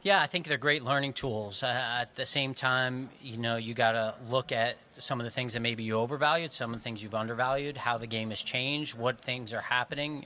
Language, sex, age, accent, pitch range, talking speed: English, male, 30-49, American, 115-130 Hz, 245 wpm